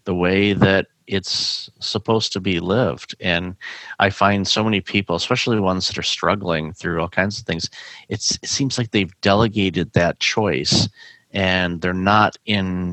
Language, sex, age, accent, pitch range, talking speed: English, male, 50-69, American, 90-105 Hz, 165 wpm